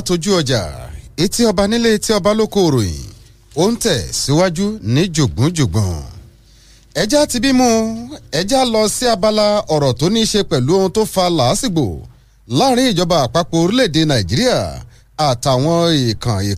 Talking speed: 125 wpm